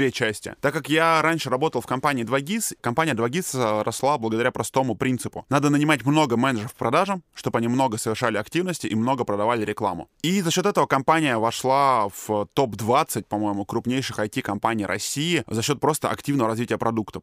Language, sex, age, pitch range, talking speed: Russian, male, 20-39, 110-140 Hz, 165 wpm